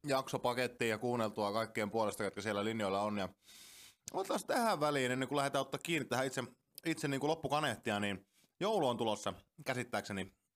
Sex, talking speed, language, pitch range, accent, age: male, 155 wpm, Finnish, 95-125 Hz, native, 20-39